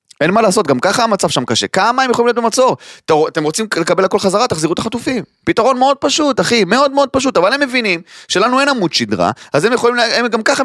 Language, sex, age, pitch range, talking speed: Hebrew, male, 30-49, 180-290 Hz, 230 wpm